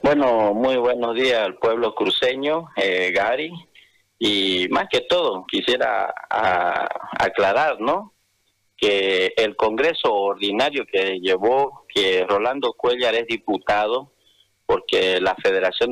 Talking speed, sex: 115 wpm, male